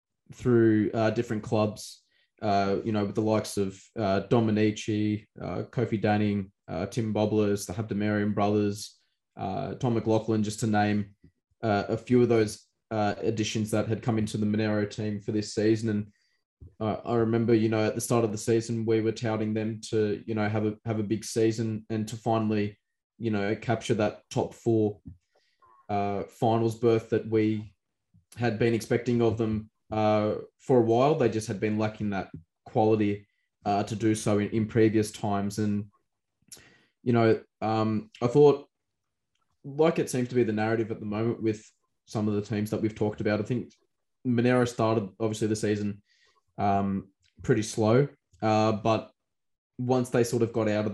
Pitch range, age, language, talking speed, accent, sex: 105-115 Hz, 20-39, English, 180 wpm, Australian, male